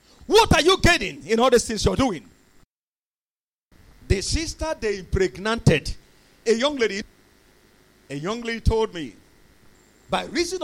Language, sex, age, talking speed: English, male, 40-59, 135 wpm